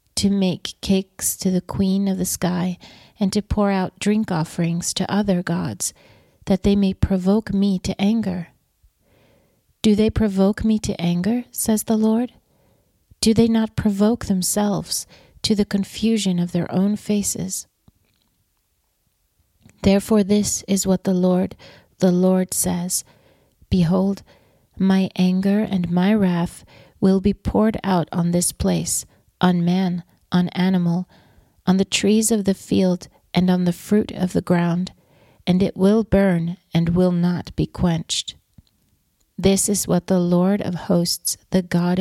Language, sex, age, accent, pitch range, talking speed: English, female, 40-59, American, 175-200 Hz, 145 wpm